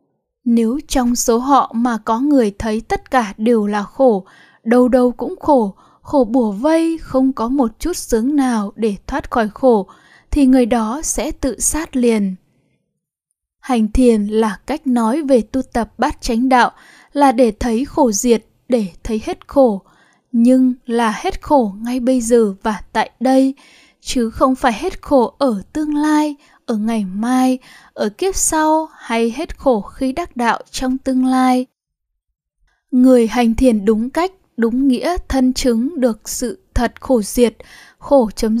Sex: female